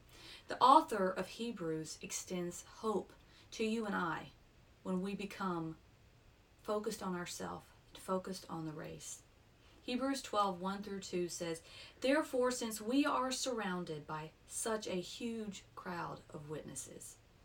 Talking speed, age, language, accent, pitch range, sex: 135 wpm, 40-59, English, American, 170-240 Hz, female